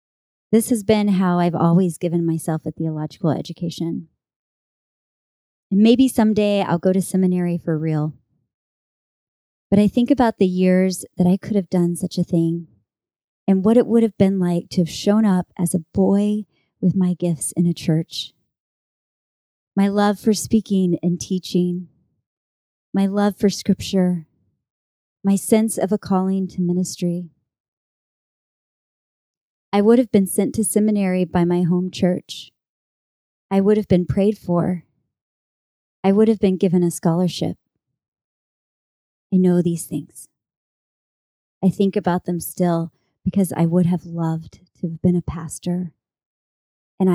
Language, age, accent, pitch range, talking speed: English, 30-49, American, 170-195 Hz, 145 wpm